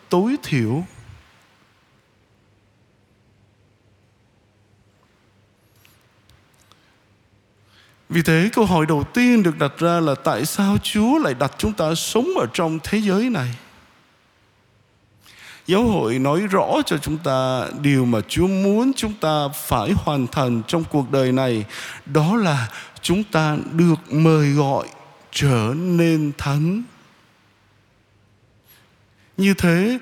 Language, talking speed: Vietnamese, 115 wpm